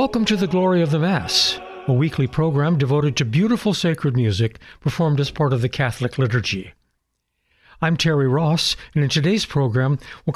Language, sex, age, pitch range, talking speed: English, male, 60-79, 125-170 Hz, 175 wpm